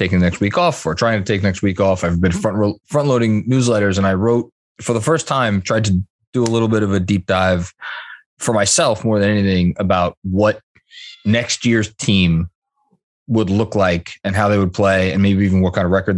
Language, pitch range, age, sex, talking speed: English, 95-120 Hz, 20-39, male, 225 wpm